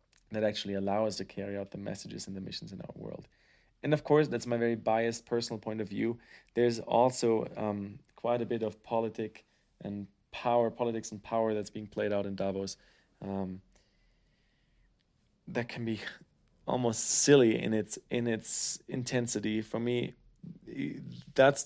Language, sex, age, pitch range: English, male, 30-49, 105-120 Hz